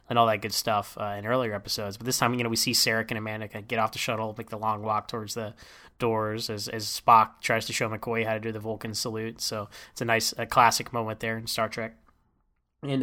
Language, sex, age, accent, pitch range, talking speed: English, male, 10-29, American, 110-135 Hz, 260 wpm